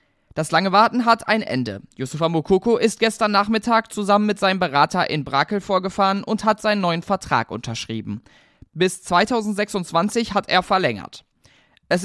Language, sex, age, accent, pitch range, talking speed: German, male, 20-39, German, 145-205 Hz, 150 wpm